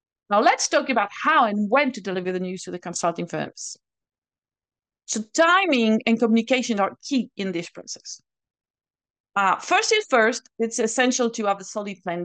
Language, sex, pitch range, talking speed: English, female, 185-230 Hz, 170 wpm